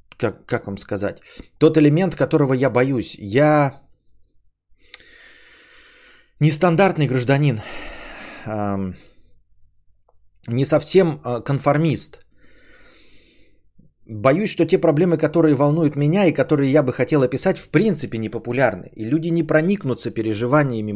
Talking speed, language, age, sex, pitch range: 105 wpm, Bulgarian, 30-49, male, 110-155 Hz